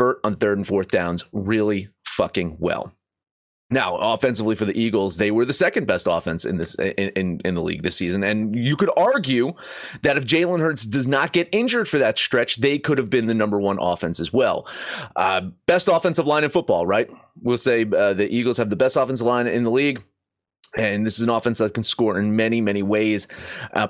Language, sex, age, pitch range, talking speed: English, male, 30-49, 105-155 Hz, 215 wpm